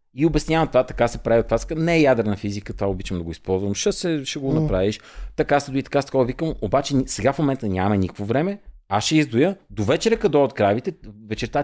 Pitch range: 105-155 Hz